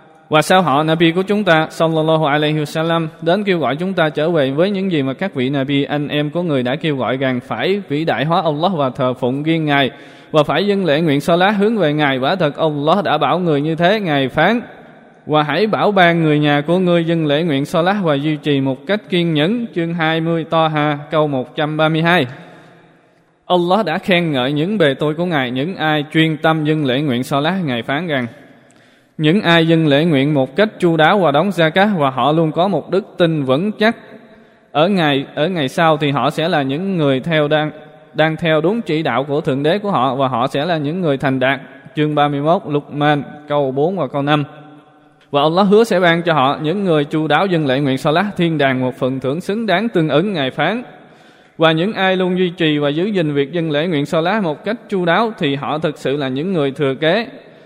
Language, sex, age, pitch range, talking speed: Vietnamese, male, 20-39, 145-175 Hz, 240 wpm